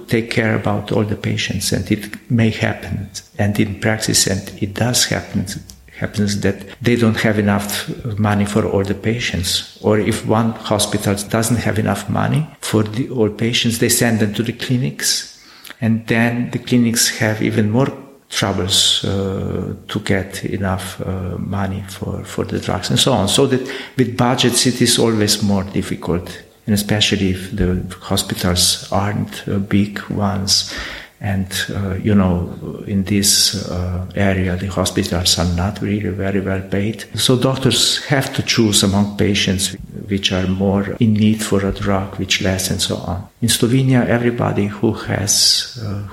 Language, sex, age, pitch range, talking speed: English, male, 50-69, 95-115 Hz, 165 wpm